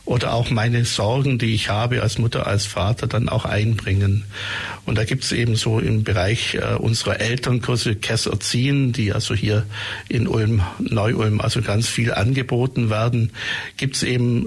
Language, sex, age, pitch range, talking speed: German, male, 60-79, 110-125 Hz, 165 wpm